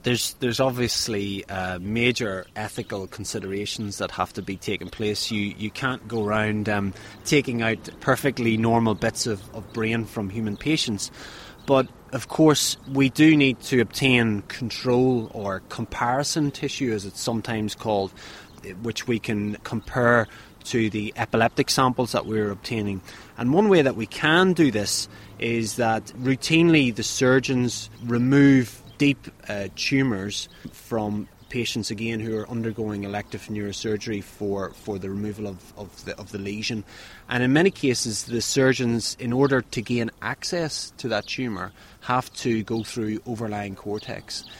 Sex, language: male, English